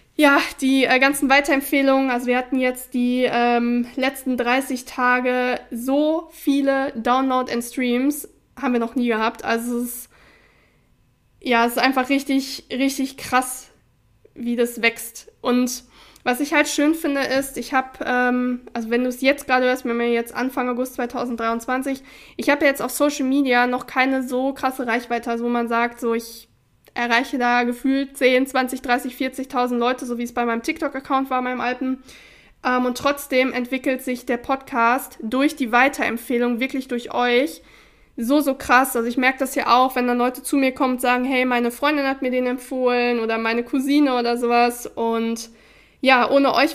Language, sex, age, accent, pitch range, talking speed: German, female, 20-39, German, 240-270 Hz, 180 wpm